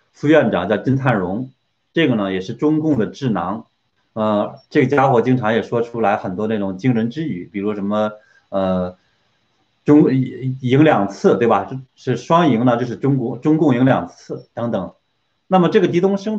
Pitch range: 110-150 Hz